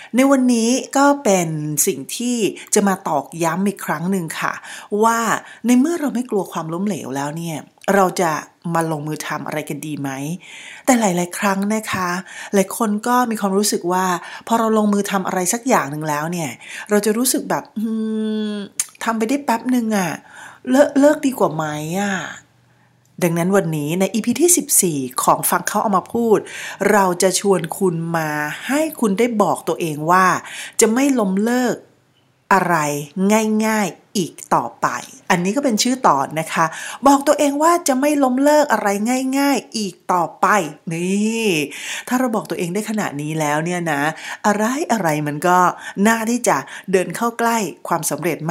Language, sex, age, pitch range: Thai, female, 30-49, 170-235 Hz